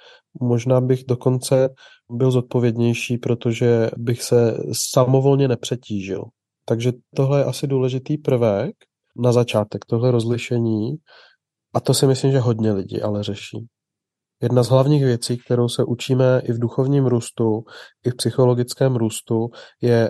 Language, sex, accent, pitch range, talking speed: Czech, male, native, 120-135 Hz, 135 wpm